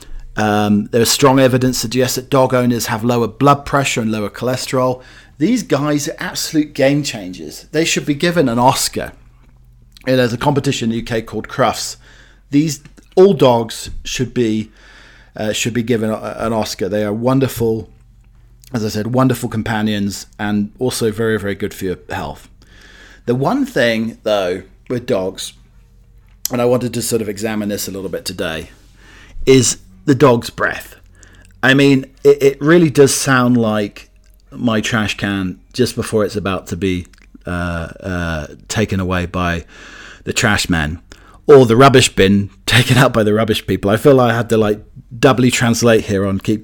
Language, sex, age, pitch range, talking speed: English, male, 40-59, 100-130 Hz, 170 wpm